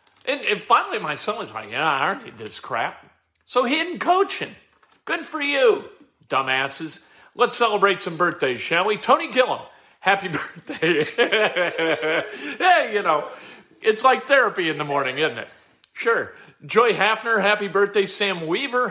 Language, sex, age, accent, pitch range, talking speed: English, male, 40-59, American, 145-210 Hz, 155 wpm